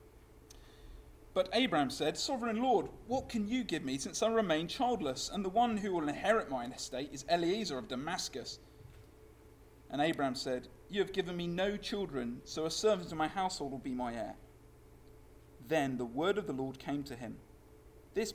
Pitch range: 125-170 Hz